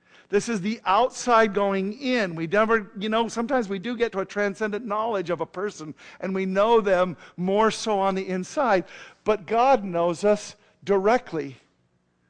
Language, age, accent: English, 50-69, American